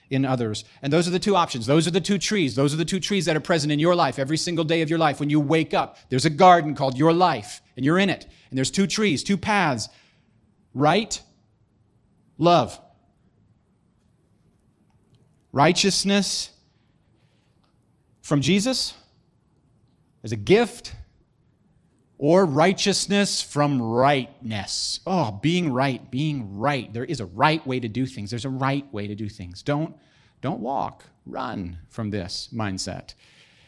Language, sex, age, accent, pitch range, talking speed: English, male, 40-59, American, 115-160 Hz, 160 wpm